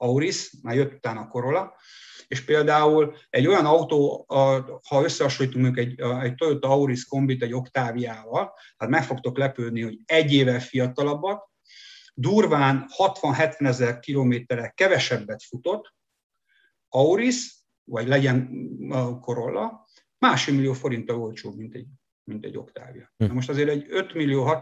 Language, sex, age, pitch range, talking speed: Hungarian, male, 60-79, 120-145 Hz, 135 wpm